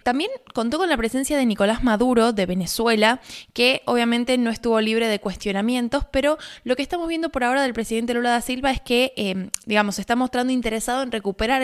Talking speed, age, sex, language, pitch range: 200 wpm, 20-39, female, Spanish, 210-255 Hz